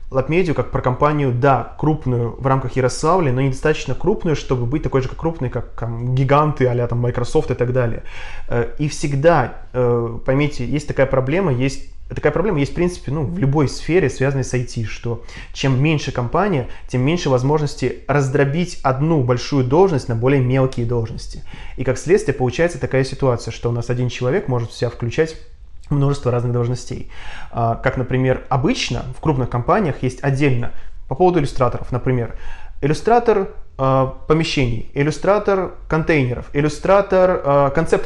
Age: 20-39